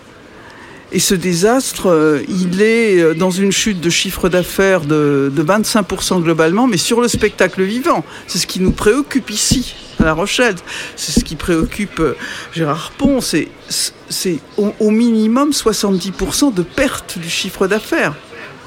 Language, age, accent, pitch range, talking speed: French, 60-79, French, 180-225 Hz, 140 wpm